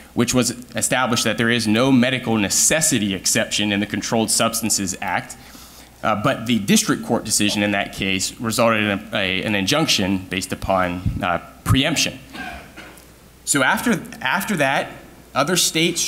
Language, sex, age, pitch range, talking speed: English, male, 30-49, 105-135 Hz, 140 wpm